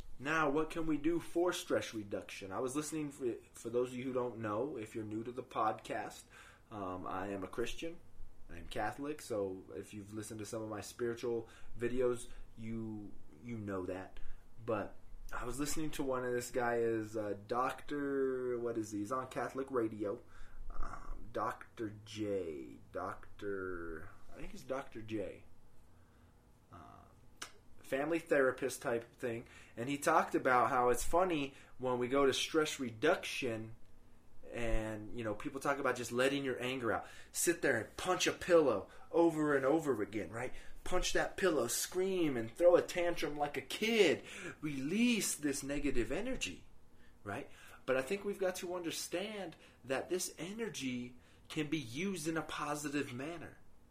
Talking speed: 160 wpm